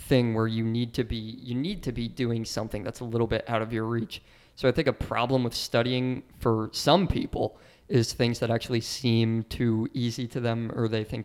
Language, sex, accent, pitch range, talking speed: English, male, American, 110-125 Hz, 225 wpm